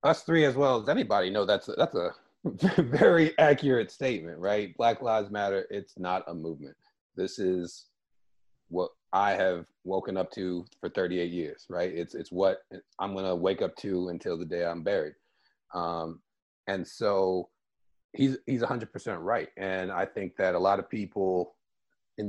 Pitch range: 90-125 Hz